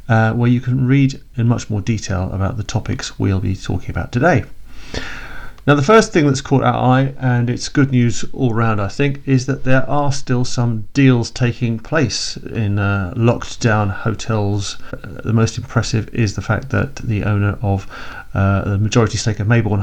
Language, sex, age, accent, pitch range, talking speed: English, male, 40-59, British, 105-125 Hz, 195 wpm